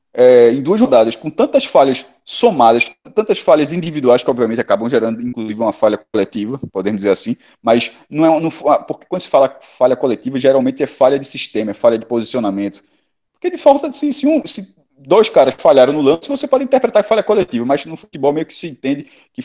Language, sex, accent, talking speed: Portuguese, male, Brazilian, 205 wpm